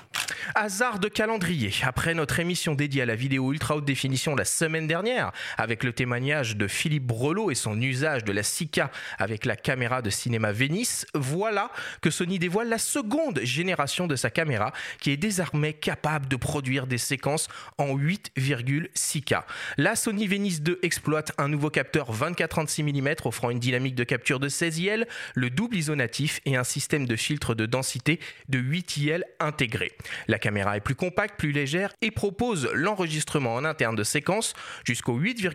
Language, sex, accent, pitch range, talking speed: French, male, French, 130-180 Hz, 170 wpm